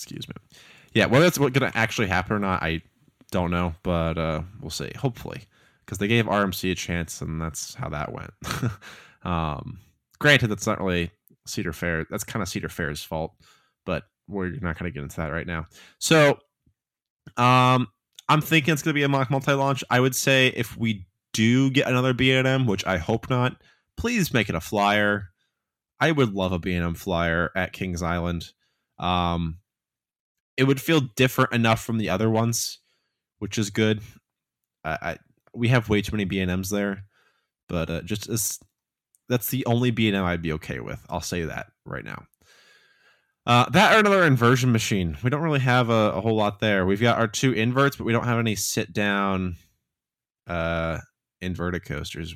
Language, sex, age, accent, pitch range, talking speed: English, male, 20-39, American, 90-125 Hz, 185 wpm